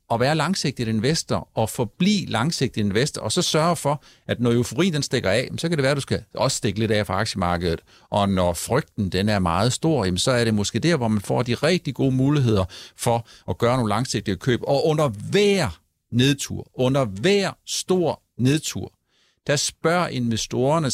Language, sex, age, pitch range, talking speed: Danish, male, 60-79, 115-175 Hz, 190 wpm